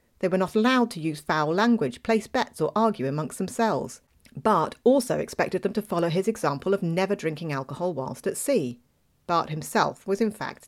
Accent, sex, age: British, female, 40-59